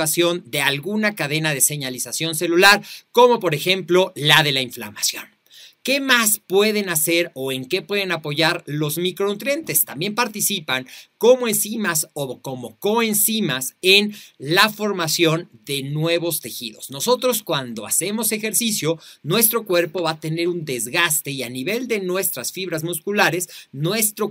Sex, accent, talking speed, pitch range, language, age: male, Mexican, 140 wpm, 150-205 Hz, Spanish, 40-59